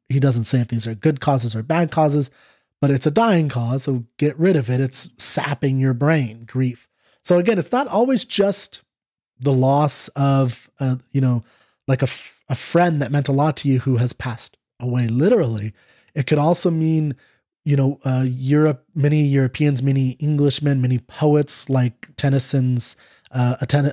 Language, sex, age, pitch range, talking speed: English, male, 30-49, 125-150 Hz, 180 wpm